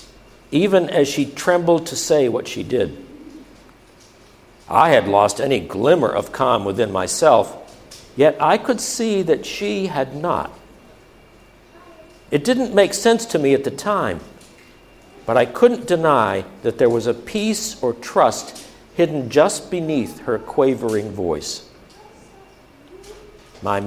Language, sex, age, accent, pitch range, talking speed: English, male, 60-79, American, 135-185 Hz, 135 wpm